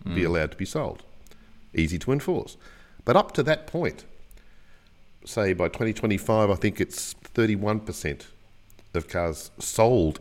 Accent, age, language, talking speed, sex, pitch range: Australian, 50-69, English, 135 wpm, male, 80-110 Hz